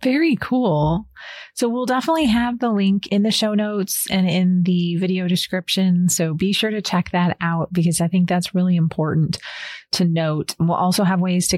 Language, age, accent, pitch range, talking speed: English, 30-49, American, 160-200 Hz, 190 wpm